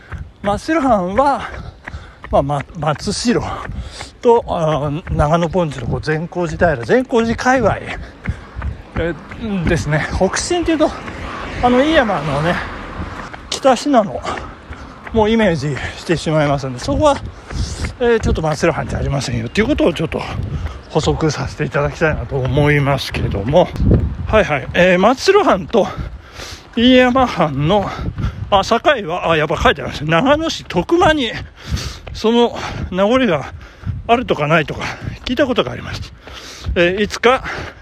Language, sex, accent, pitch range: Japanese, male, native, 140-230 Hz